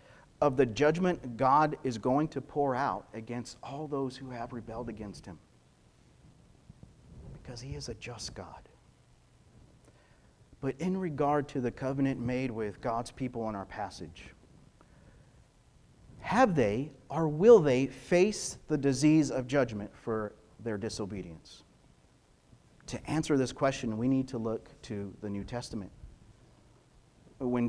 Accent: American